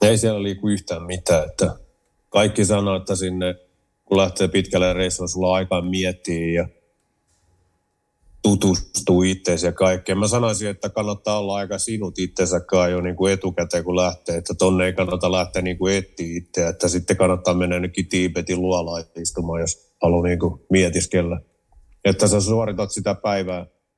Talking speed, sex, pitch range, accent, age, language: 150 wpm, male, 90-100 Hz, native, 30-49, Finnish